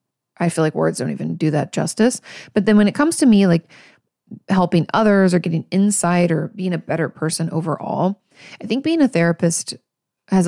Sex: female